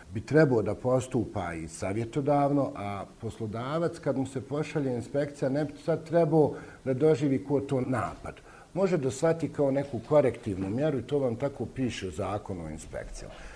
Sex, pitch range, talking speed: male, 95-140 Hz, 160 wpm